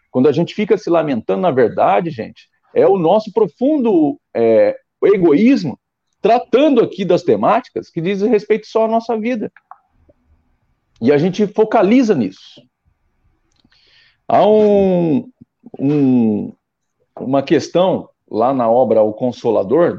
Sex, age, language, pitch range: male, 50-69, Portuguese, 145-225 Hz